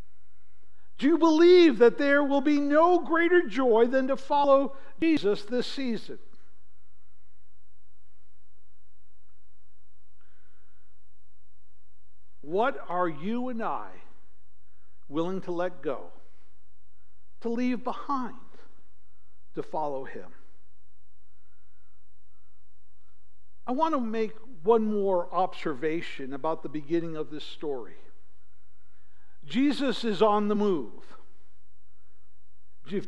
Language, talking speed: English, 90 wpm